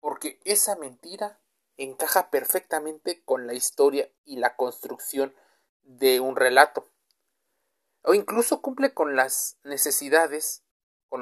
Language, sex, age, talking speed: Spanish, male, 30-49, 110 wpm